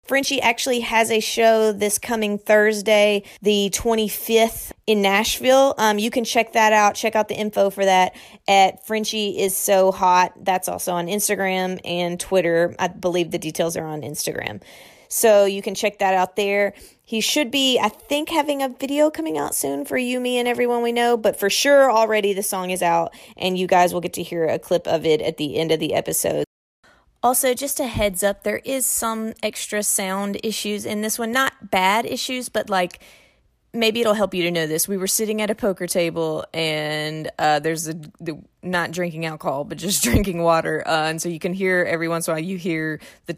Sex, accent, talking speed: female, American, 210 wpm